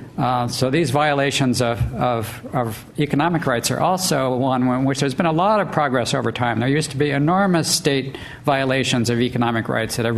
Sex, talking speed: male, 200 wpm